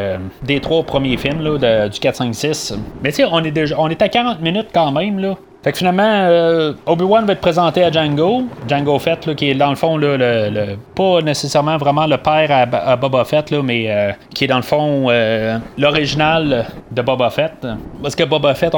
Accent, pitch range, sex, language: Canadian, 120-155 Hz, male, French